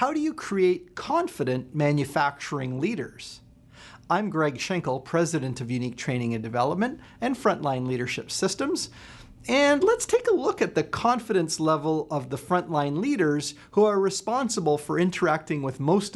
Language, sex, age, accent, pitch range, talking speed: English, male, 40-59, American, 125-180 Hz, 150 wpm